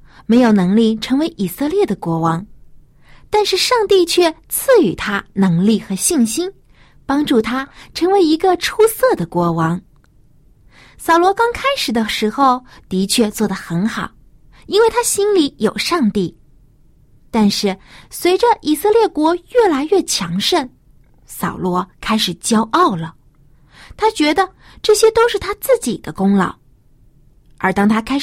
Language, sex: Chinese, female